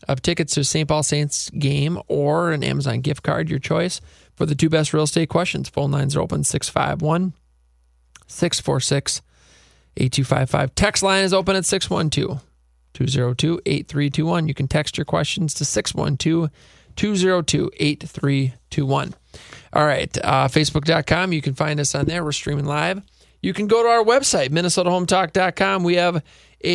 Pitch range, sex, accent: 135-165 Hz, male, American